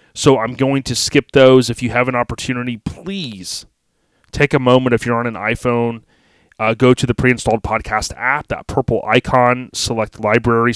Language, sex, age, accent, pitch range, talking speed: English, male, 30-49, American, 110-125 Hz, 180 wpm